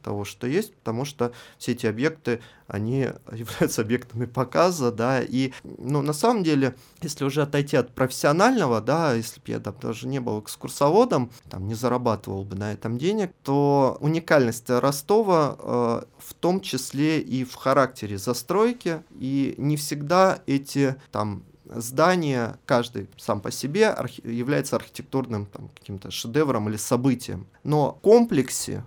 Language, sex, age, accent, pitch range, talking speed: Russian, male, 20-39, native, 115-145 Hz, 145 wpm